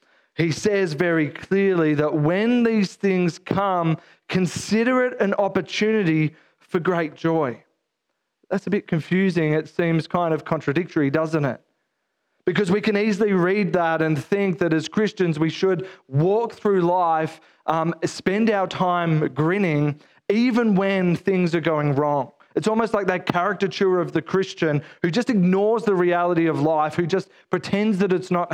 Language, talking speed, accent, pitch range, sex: English, 160 wpm, Australian, 160-195 Hz, male